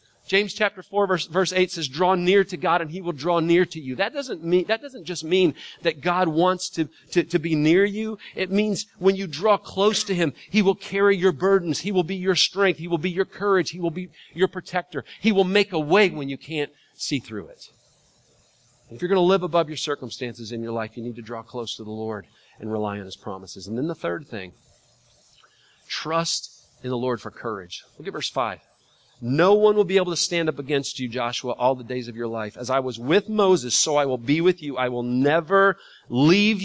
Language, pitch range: English, 125-190 Hz